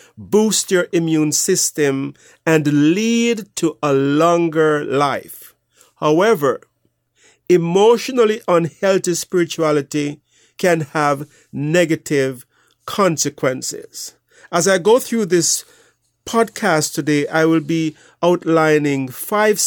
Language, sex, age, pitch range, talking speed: English, male, 50-69, 140-180 Hz, 90 wpm